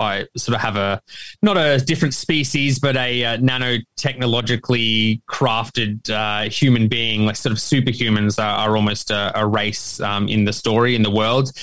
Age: 20-39